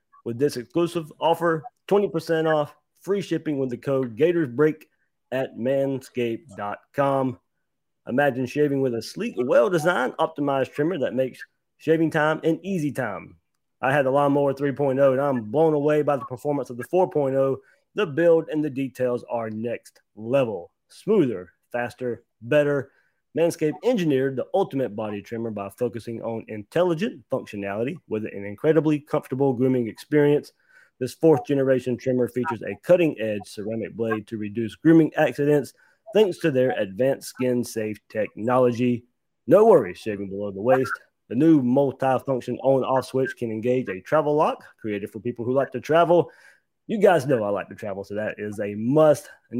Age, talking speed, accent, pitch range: 30-49, 160 wpm, American, 120-155 Hz